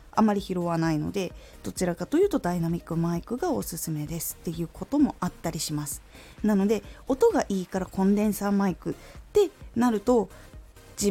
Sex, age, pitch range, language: female, 20-39, 175-275 Hz, Japanese